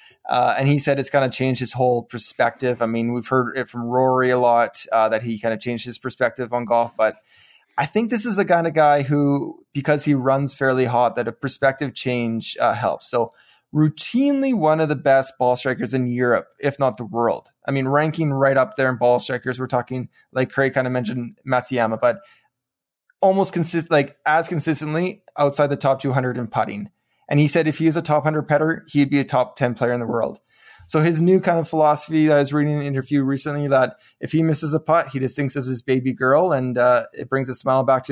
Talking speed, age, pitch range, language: 230 wpm, 20-39, 125-145 Hz, English